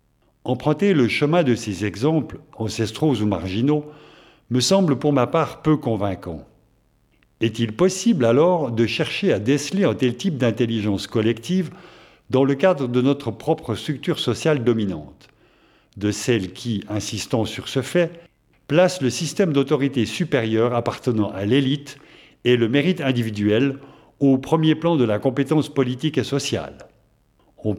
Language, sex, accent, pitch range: French, male, French, 115-155 Hz